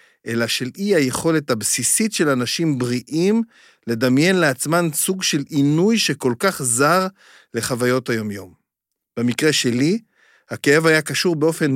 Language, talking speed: Hebrew, 120 wpm